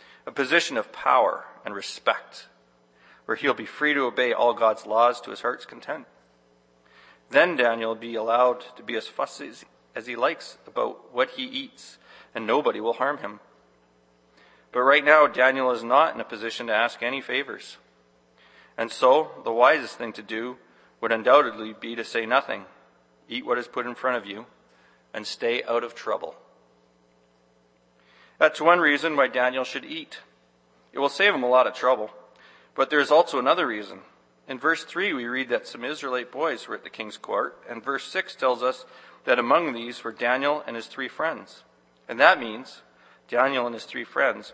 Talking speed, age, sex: 185 wpm, 40-59, male